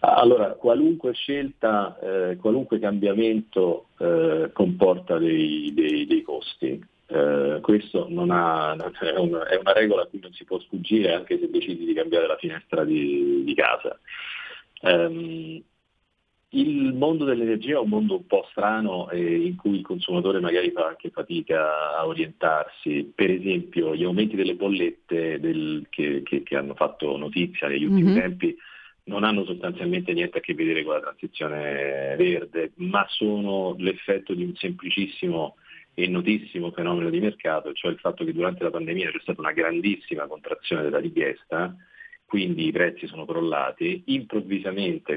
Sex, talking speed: male, 150 wpm